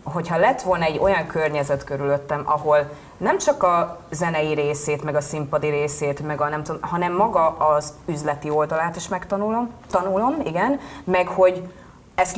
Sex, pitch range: female, 150-185 Hz